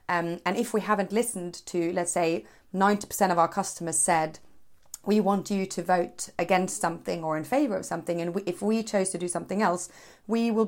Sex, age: female, 30-49